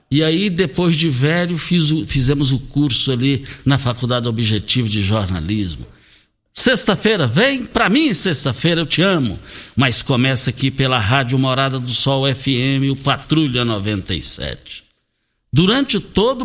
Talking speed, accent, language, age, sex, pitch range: 140 wpm, Brazilian, Portuguese, 60-79, male, 120-170 Hz